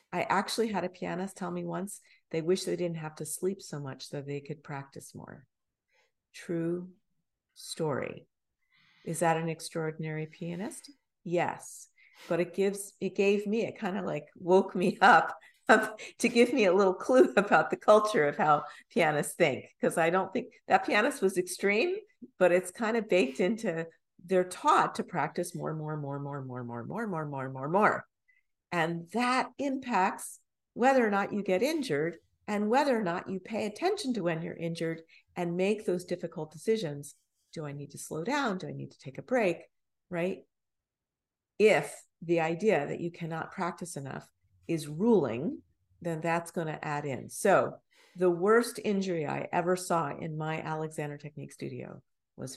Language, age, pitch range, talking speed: English, 50-69, 155-205 Hz, 175 wpm